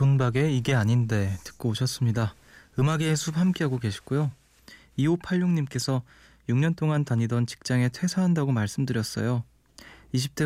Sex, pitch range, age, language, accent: male, 115-140 Hz, 20-39, Korean, native